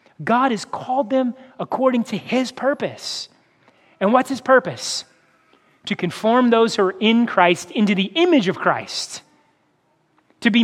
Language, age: English, 30-49